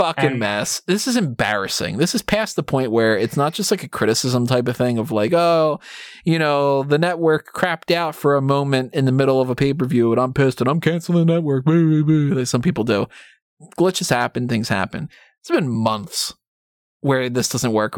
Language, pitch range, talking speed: English, 125-175 Hz, 205 wpm